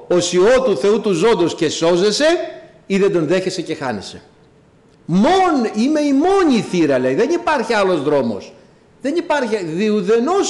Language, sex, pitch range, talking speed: Greek, male, 135-210 Hz, 155 wpm